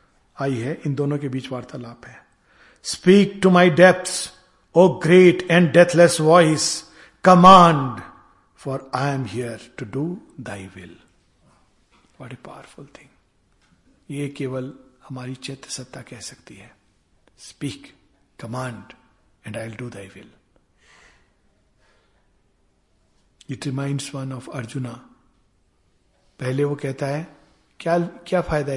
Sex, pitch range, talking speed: male, 130-175 Hz, 115 wpm